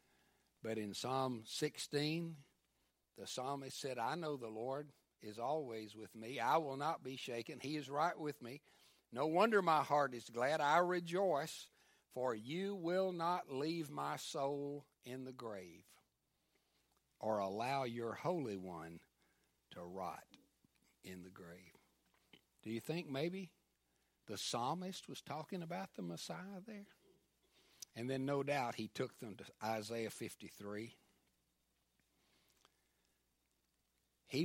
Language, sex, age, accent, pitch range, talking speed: English, male, 60-79, American, 95-155 Hz, 130 wpm